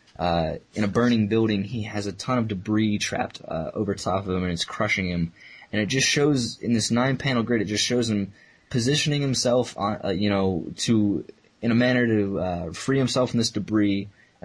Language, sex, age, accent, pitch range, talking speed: English, male, 20-39, American, 100-125 Hz, 210 wpm